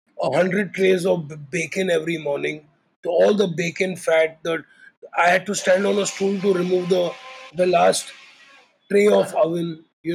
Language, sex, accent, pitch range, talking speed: Hindi, male, native, 170-235 Hz, 165 wpm